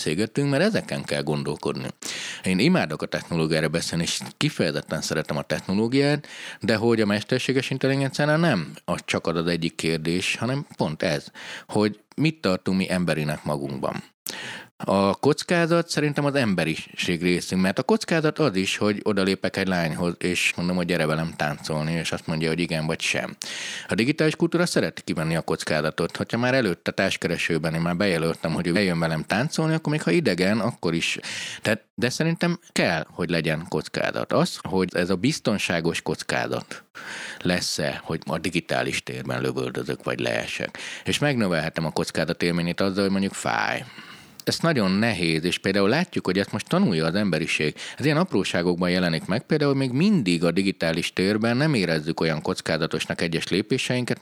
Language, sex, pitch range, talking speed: Hungarian, male, 80-135 Hz, 160 wpm